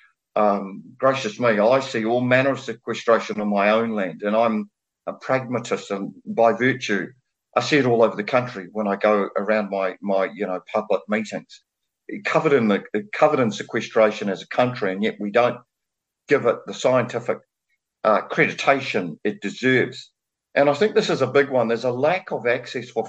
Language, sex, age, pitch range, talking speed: English, male, 50-69, 110-135 Hz, 190 wpm